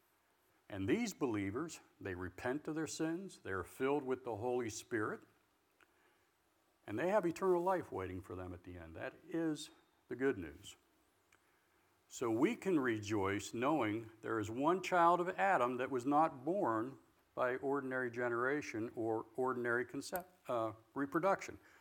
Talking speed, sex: 145 wpm, male